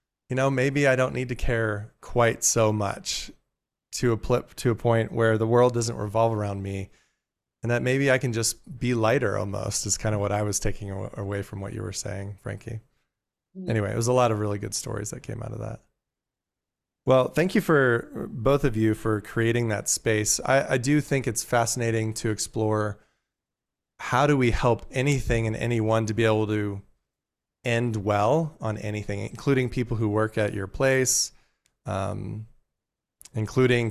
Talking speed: 180 wpm